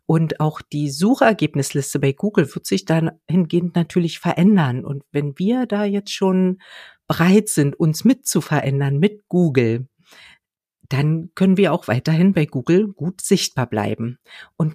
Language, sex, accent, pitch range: German, female, German, 150-195 Hz